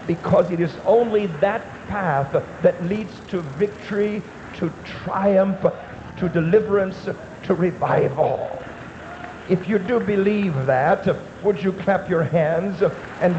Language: English